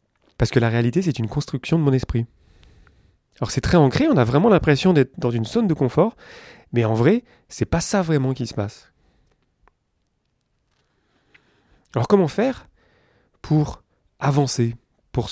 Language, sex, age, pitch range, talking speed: French, male, 30-49, 115-150 Hz, 155 wpm